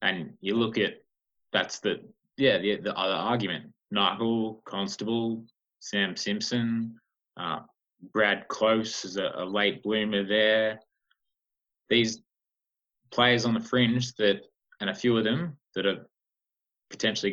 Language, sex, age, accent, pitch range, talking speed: English, male, 20-39, Australian, 95-115 Hz, 130 wpm